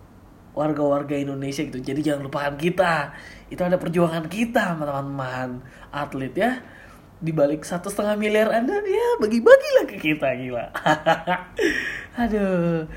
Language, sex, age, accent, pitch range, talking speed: Indonesian, male, 20-39, native, 135-195 Hz, 125 wpm